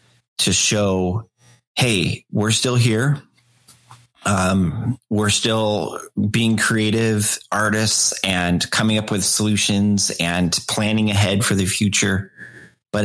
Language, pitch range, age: English, 95-115 Hz, 30-49